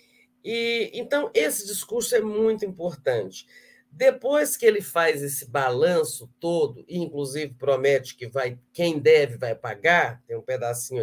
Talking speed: 135 wpm